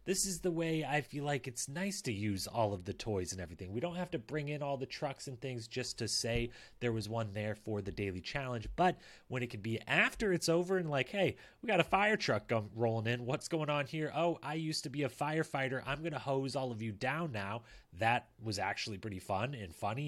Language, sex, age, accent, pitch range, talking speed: English, male, 30-49, American, 100-140 Hz, 255 wpm